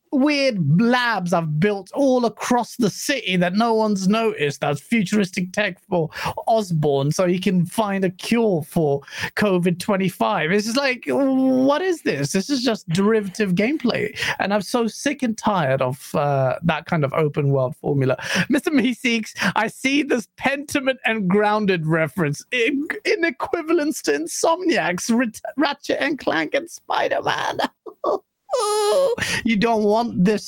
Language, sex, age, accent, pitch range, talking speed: English, male, 30-49, British, 170-255 Hz, 150 wpm